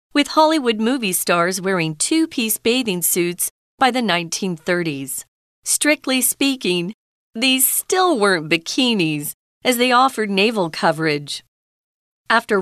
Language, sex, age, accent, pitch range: Chinese, female, 40-59, American, 180-265 Hz